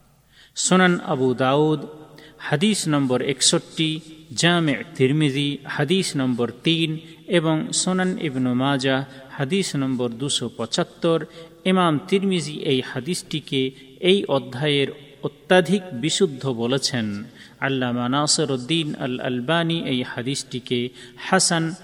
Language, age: Bengali, 40-59